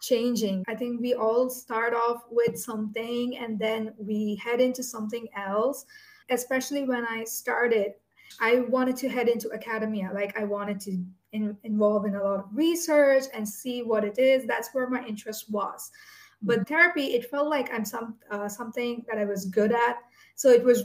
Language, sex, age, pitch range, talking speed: English, female, 20-39, 215-255 Hz, 185 wpm